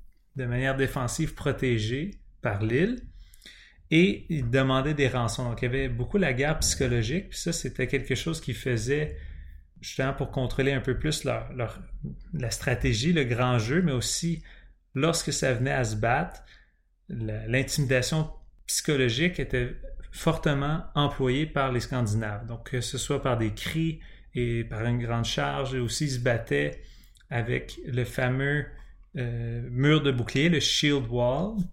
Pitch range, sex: 120-150 Hz, male